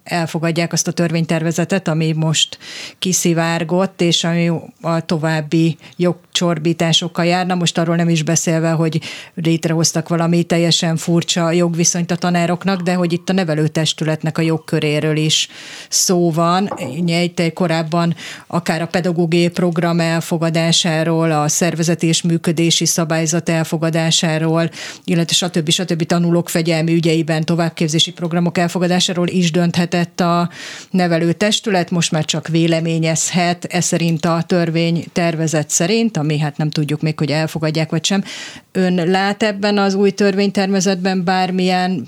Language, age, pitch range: Hungarian, 30-49, 165-180 Hz